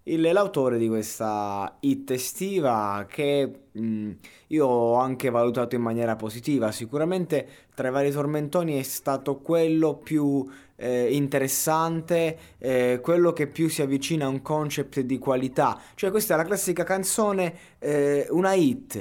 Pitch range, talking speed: 120-155 Hz, 140 wpm